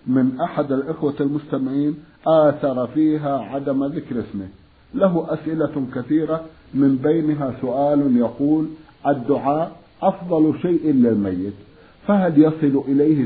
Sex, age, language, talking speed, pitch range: male, 50-69, Arabic, 105 wpm, 125-155 Hz